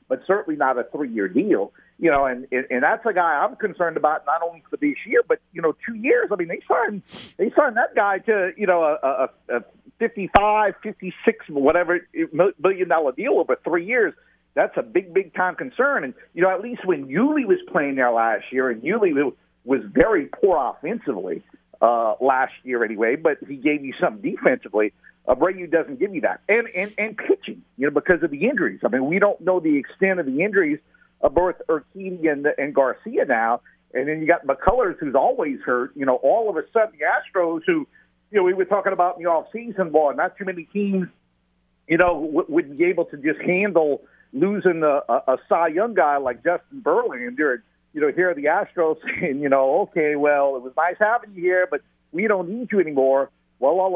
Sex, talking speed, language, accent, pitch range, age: male, 215 wpm, English, American, 150-215 Hz, 50-69